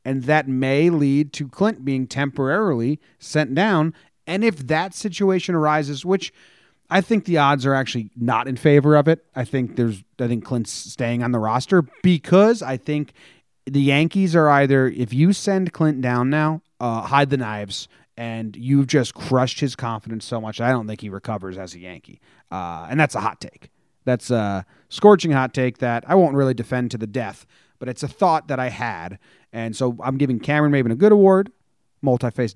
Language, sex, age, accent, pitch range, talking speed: English, male, 30-49, American, 120-155 Hz, 195 wpm